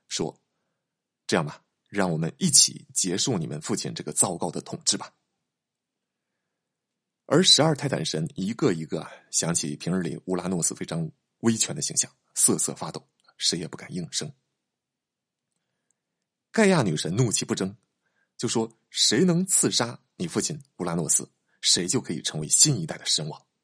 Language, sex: Chinese, male